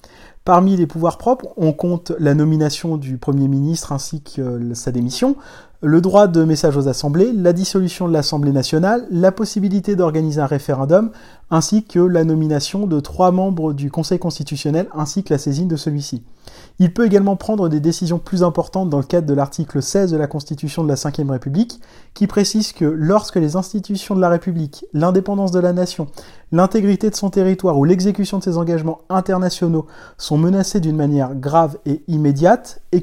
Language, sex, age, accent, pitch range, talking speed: French, male, 30-49, French, 150-195 Hz, 180 wpm